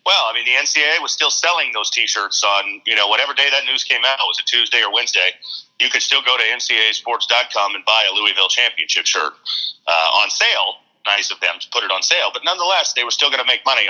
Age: 40-59